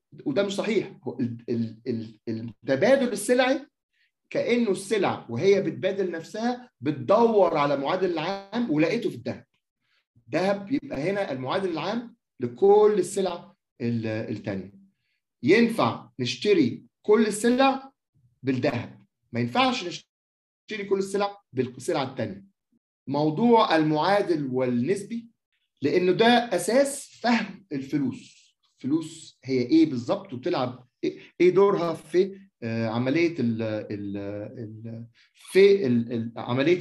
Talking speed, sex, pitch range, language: 95 wpm, male, 125-200 Hz, Arabic